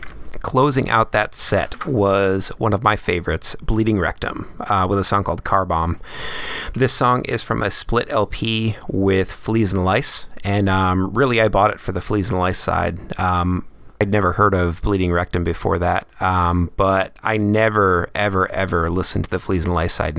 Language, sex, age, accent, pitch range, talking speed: English, male, 30-49, American, 90-110 Hz, 185 wpm